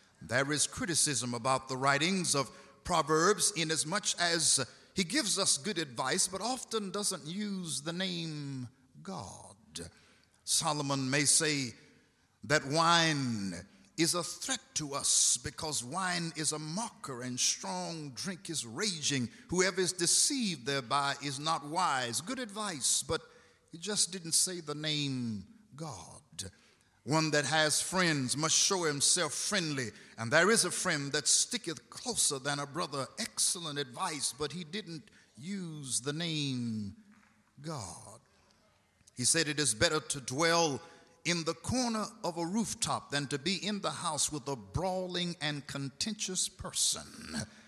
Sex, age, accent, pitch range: male, 50-69, American, 140-185 Hz